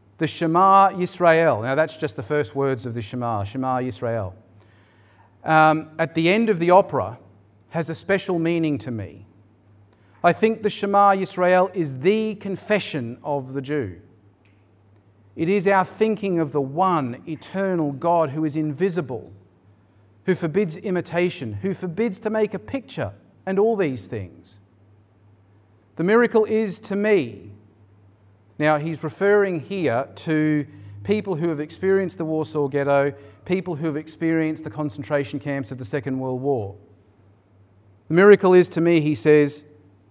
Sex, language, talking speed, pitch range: male, English, 150 wpm, 100-165 Hz